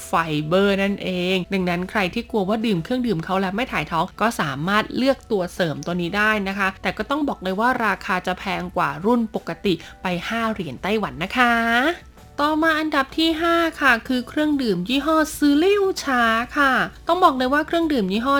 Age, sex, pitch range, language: 20-39, female, 190-245 Hz, Thai